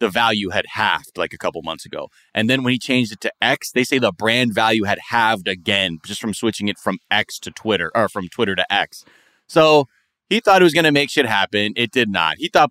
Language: English